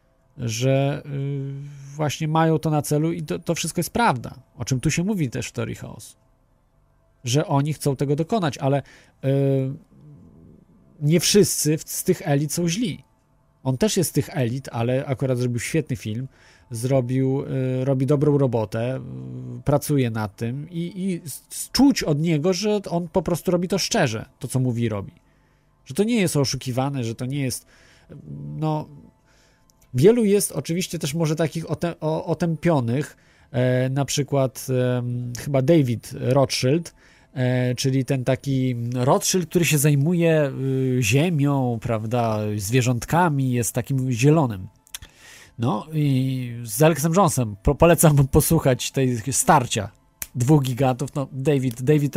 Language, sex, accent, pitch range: Polish, male, native, 125-155 Hz